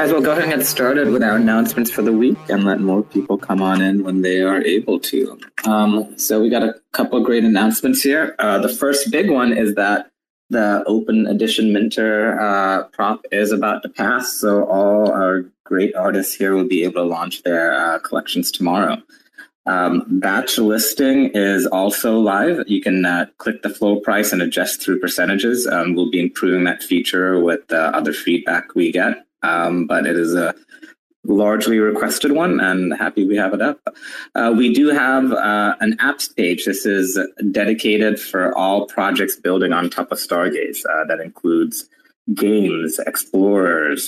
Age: 20-39